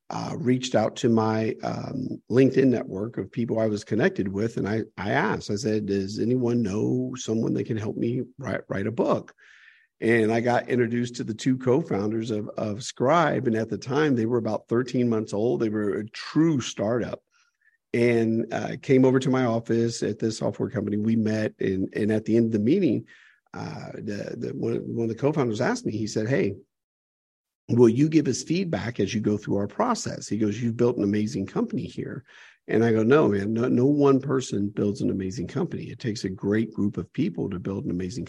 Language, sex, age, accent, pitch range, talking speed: English, male, 50-69, American, 105-120 Hz, 210 wpm